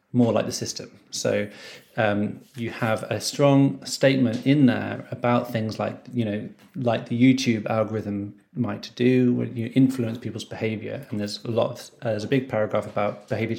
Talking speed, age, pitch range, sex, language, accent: 180 wpm, 30-49, 105-125 Hz, male, English, British